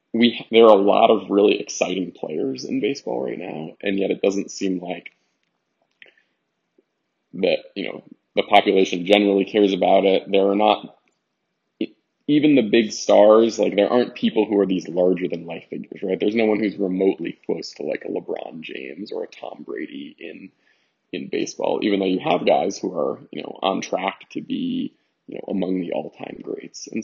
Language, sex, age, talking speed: English, male, 20-39, 185 wpm